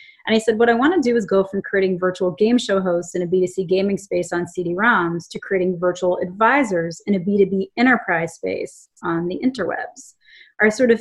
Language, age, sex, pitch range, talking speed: English, 30-49, female, 185-220 Hz, 205 wpm